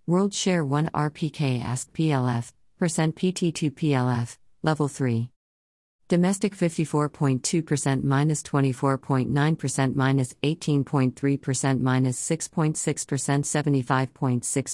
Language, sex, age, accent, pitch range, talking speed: English, female, 50-69, American, 135-155 Hz, 155 wpm